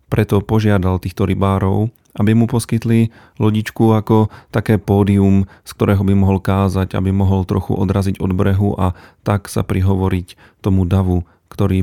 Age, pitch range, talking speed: 40-59, 95-105 Hz, 145 wpm